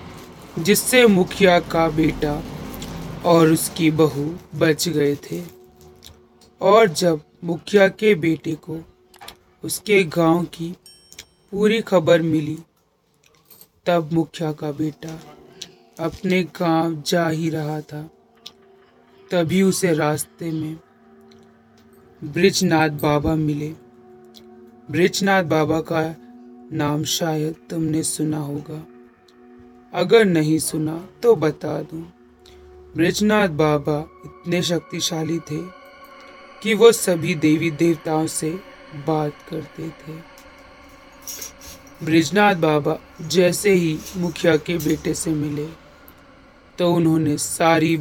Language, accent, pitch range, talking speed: Hindi, native, 150-180 Hz, 100 wpm